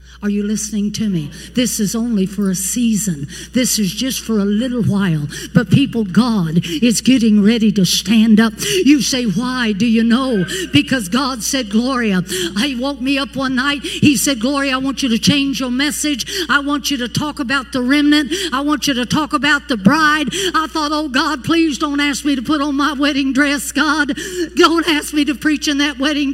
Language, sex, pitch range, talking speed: English, female, 225-335 Hz, 210 wpm